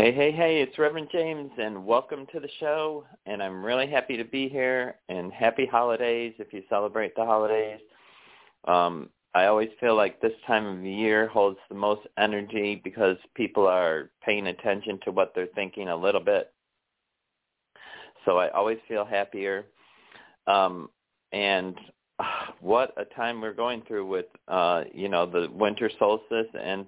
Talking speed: 165 wpm